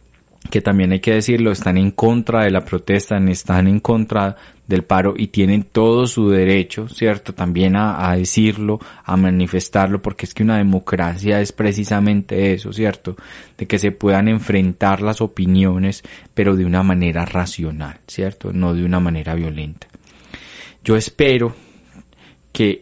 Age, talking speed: 20-39, 155 wpm